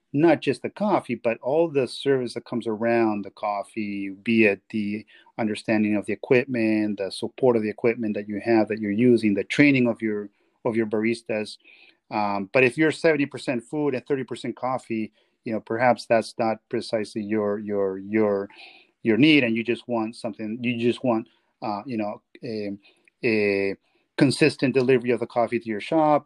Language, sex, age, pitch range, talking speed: English, male, 40-59, 105-130 Hz, 185 wpm